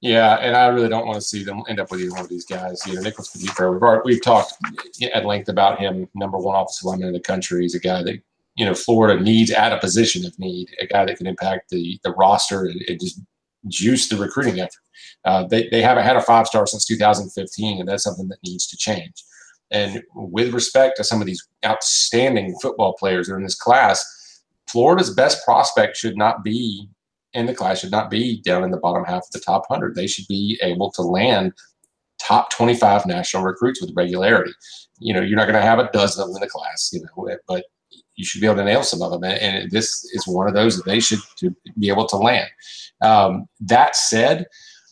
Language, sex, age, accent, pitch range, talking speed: English, male, 40-59, American, 95-115 Hz, 225 wpm